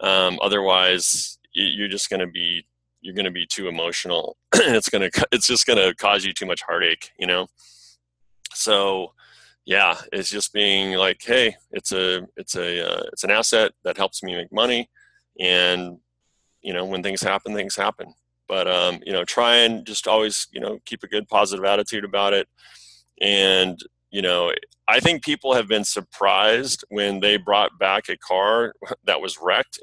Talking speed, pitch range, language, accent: 175 wpm, 90-110 Hz, English, American